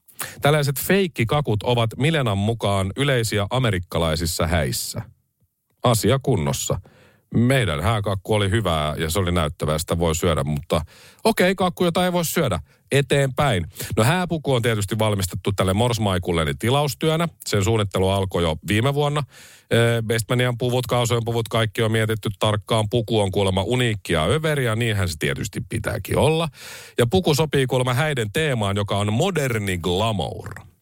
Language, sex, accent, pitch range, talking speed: Finnish, male, native, 95-130 Hz, 140 wpm